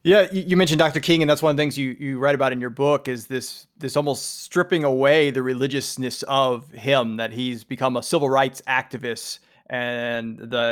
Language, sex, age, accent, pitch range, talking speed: English, male, 30-49, American, 130-165 Hz, 205 wpm